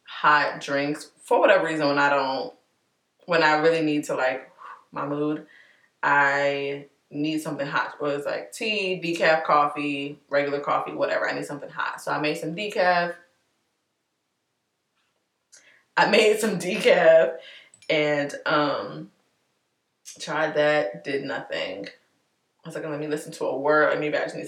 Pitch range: 145-175 Hz